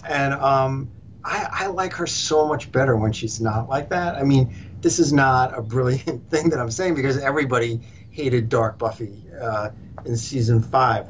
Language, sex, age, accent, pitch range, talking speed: English, male, 50-69, American, 115-140 Hz, 185 wpm